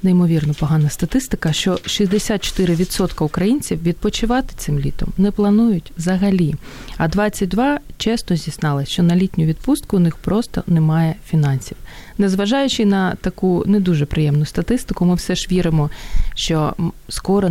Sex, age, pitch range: female, 30-49, 150-195 Hz